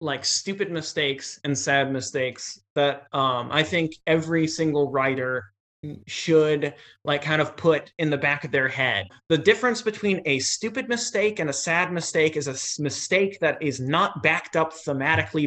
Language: English